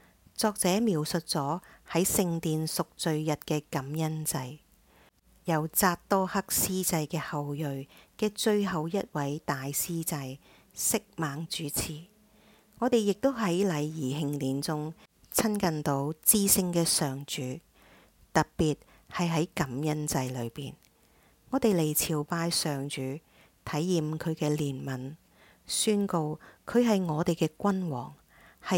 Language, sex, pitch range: English, female, 145-180 Hz